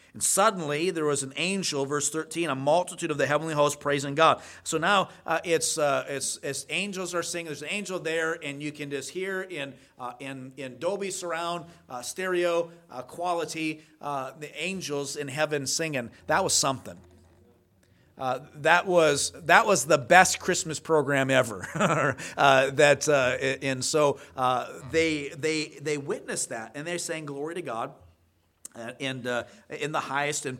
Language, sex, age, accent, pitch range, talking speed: English, male, 40-59, American, 120-155 Hz, 170 wpm